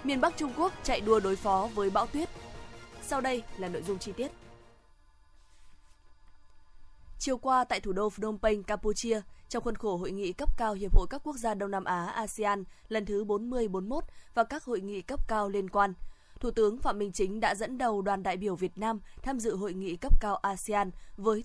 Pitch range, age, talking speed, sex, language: 190-235 Hz, 20-39, 210 wpm, female, Vietnamese